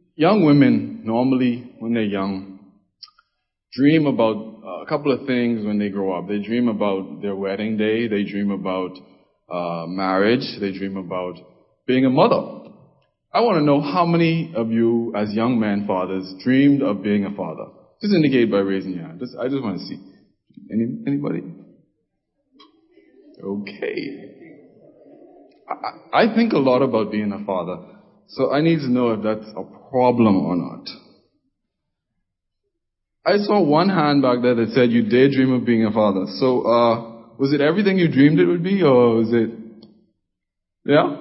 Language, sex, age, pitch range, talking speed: English, male, 20-39, 105-145 Hz, 165 wpm